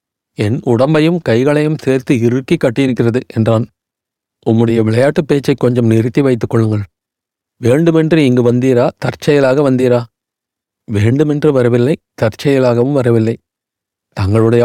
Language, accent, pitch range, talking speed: Tamil, native, 115-150 Hz, 100 wpm